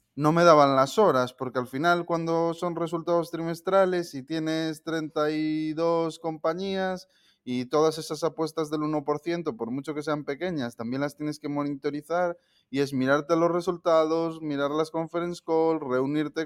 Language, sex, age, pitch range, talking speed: Spanish, male, 20-39, 125-155 Hz, 155 wpm